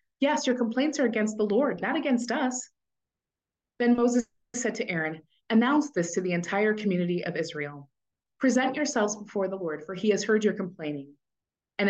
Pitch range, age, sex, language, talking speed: 160-210 Hz, 30-49, female, English, 175 wpm